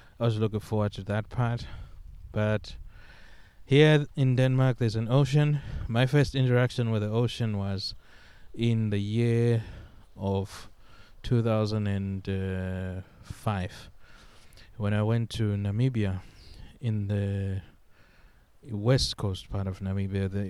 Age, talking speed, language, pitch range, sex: 20-39, 115 wpm, English, 100-115 Hz, male